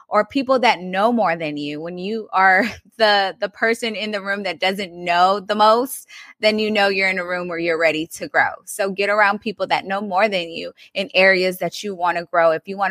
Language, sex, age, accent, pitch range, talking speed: English, female, 20-39, American, 180-220 Hz, 240 wpm